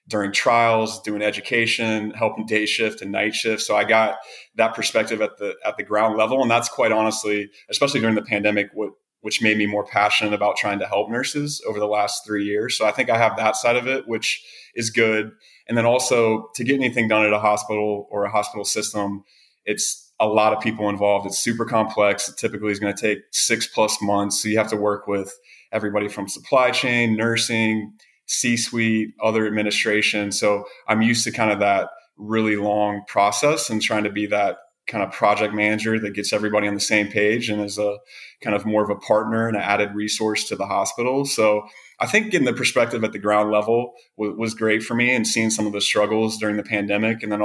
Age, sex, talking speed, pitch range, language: 20-39, male, 215 wpm, 105-110 Hz, English